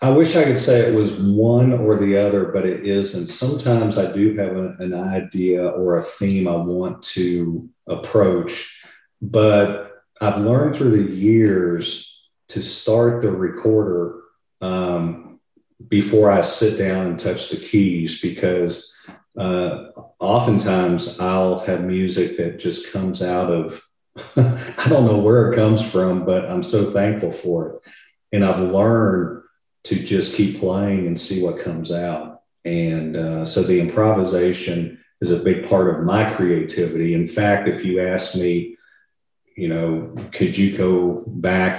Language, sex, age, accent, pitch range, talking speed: English, male, 40-59, American, 85-105 Hz, 150 wpm